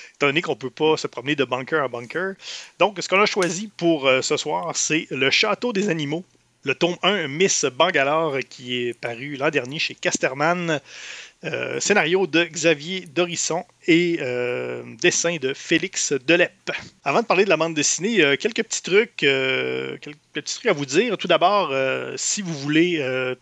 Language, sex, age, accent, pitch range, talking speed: French, male, 30-49, Canadian, 135-175 Hz, 195 wpm